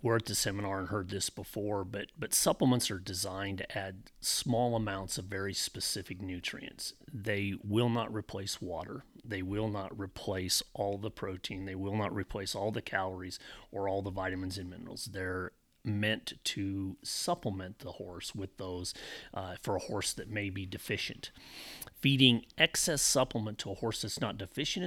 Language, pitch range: English, 95-115 Hz